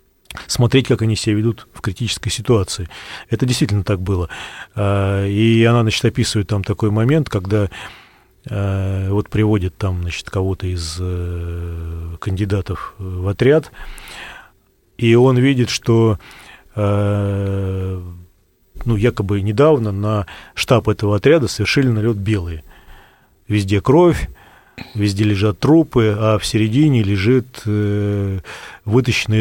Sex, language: male, Russian